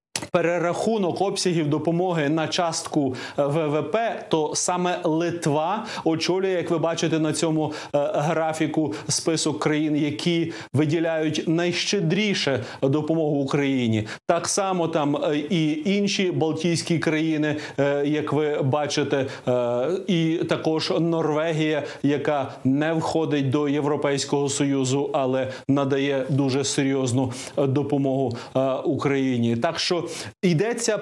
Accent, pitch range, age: native, 145-170 Hz, 30-49